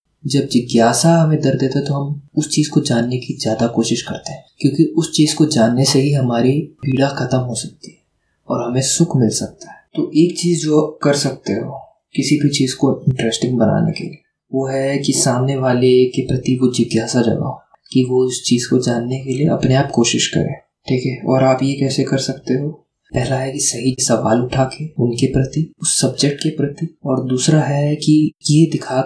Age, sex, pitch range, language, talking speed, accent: 20-39, male, 125-145 Hz, Hindi, 205 wpm, native